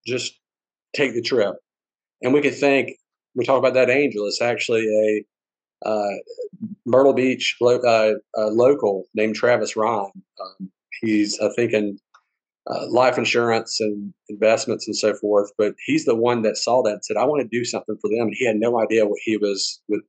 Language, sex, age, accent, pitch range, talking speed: English, male, 40-59, American, 105-120 Hz, 190 wpm